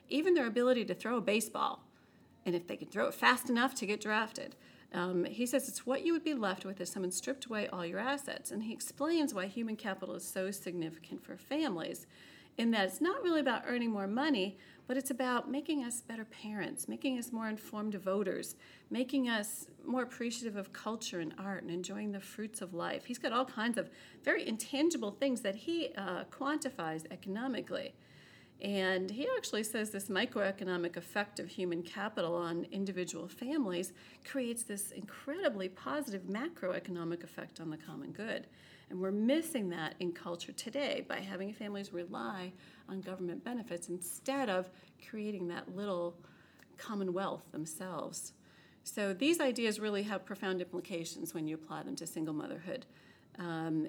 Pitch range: 180-250 Hz